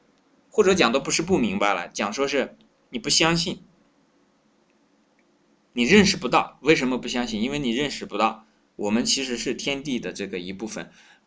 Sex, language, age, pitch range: male, Chinese, 20-39, 115-180 Hz